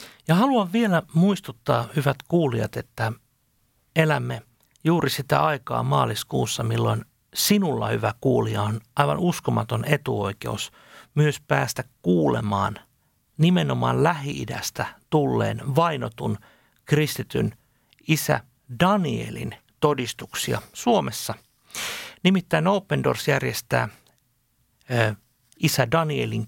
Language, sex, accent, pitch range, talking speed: Finnish, male, native, 115-160 Hz, 90 wpm